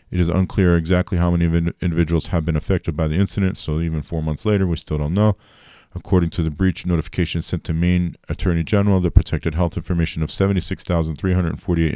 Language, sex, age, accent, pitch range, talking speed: English, male, 40-59, American, 80-90 Hz, 190 wpm